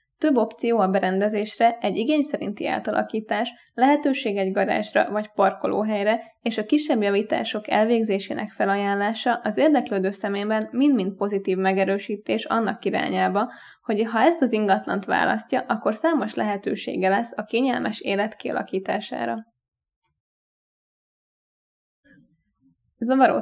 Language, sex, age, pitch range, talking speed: Hungarian, female, 20-39, 195-235 Hz, 110 wpm